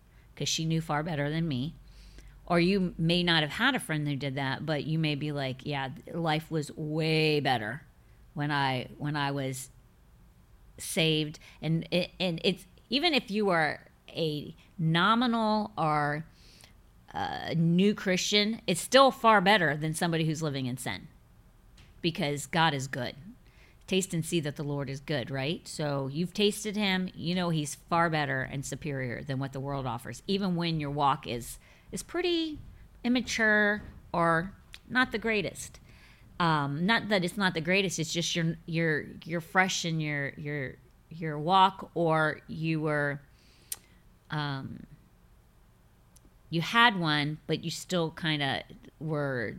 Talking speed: 160 wpm